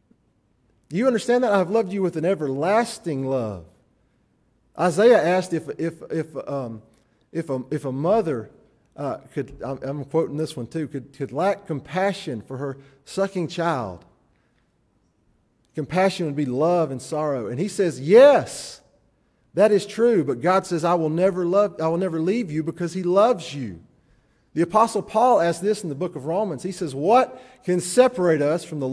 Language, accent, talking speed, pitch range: English, American, 160 wpm, 140-210 Hz